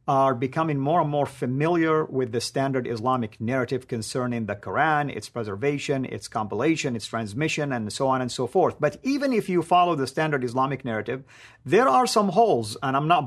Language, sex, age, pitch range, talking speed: English, male, 50-69, 135-175 Hz, 190 wpm